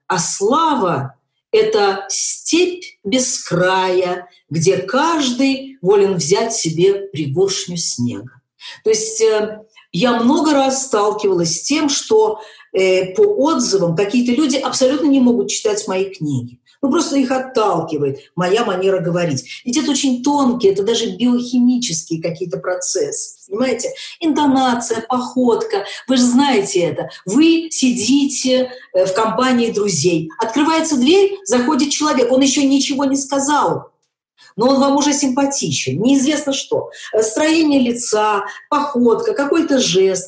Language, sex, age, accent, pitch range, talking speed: Russian, female, 50-69, native, 190-280 Hz, 125 wpm